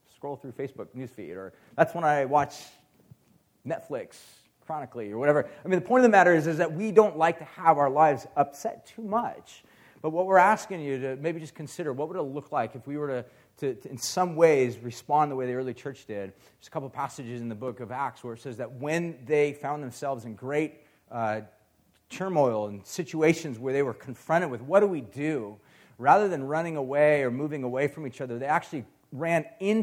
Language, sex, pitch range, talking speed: English, male, 125-155 Hz, 215 wpm